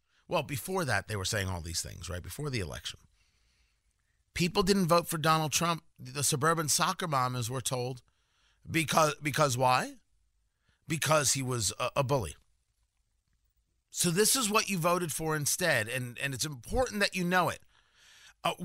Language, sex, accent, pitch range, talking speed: English, male, American, 130-210 Hz, 165 wpm